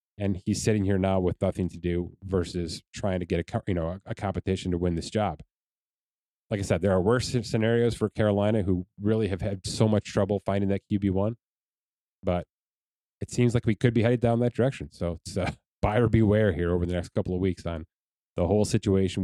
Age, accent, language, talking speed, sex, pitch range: 30-49, American, English, 210 wpm, male, 90-110 Hz